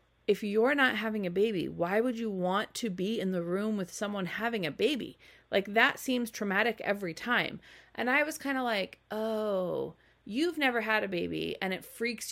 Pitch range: 190-255 Hz